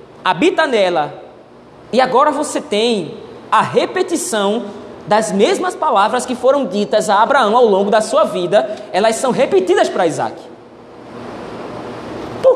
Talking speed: 130 wpm